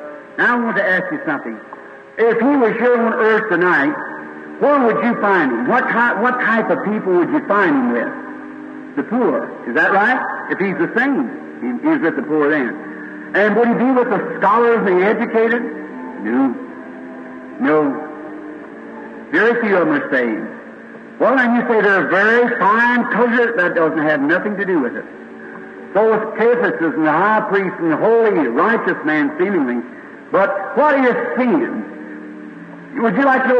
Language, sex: English, male